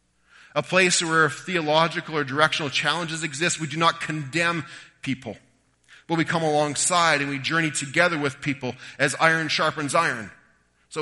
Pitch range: 140-170 Hz